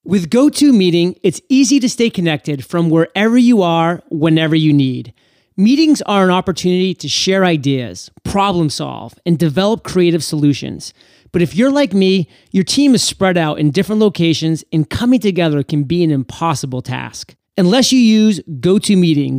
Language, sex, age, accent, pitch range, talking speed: English, male, 30-49, American, 160-210 Hz, 160 wpm